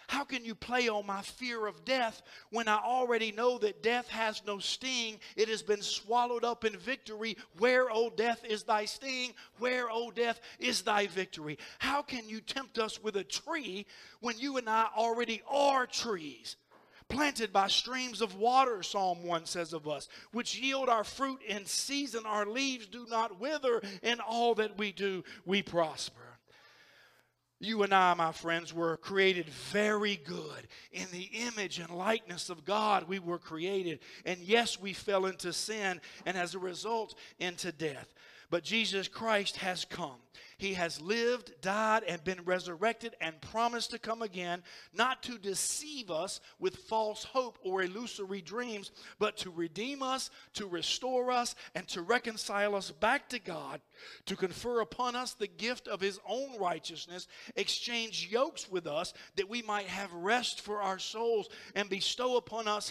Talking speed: 170 wpm